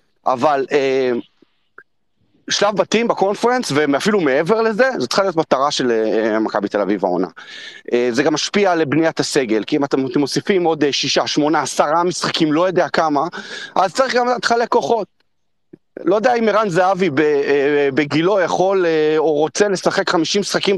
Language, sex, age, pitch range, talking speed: Hebrew, male, 30-49, 160-220 Hz, 145 wpm